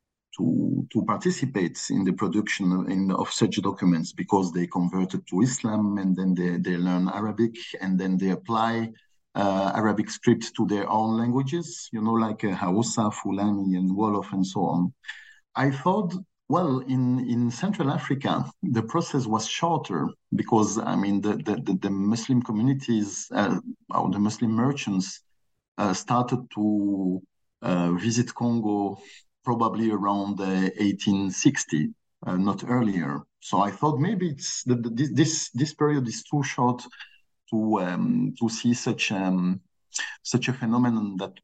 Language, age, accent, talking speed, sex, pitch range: English, 50-69, French, 150 wpm, male, 100-125 Hz